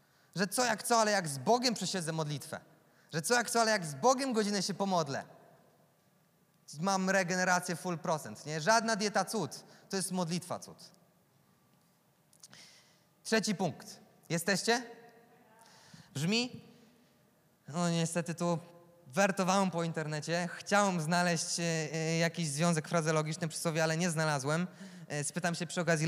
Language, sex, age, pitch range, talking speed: Polish, male, 20-39, 160-200 Hz, 130 wpm